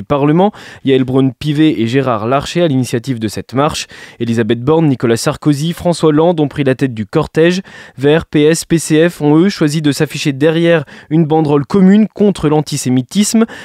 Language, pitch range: French, 130-160 Hz